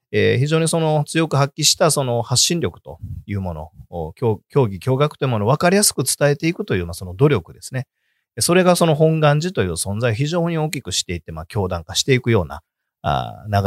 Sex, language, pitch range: male, Japanese, 95-160 Hz